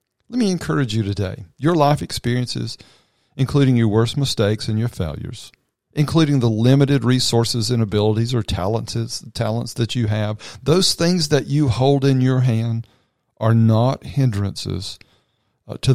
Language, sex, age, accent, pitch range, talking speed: English, male, 50-69, American, 100-130 Hz, 145 wpm